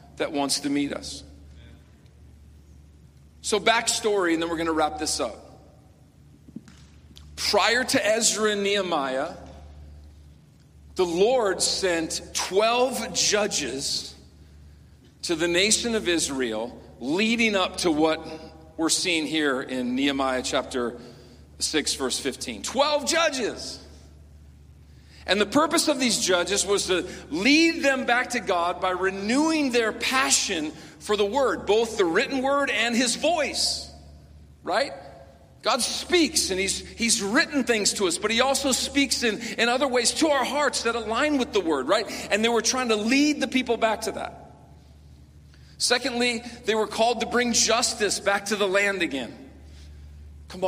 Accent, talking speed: American, 145 wpm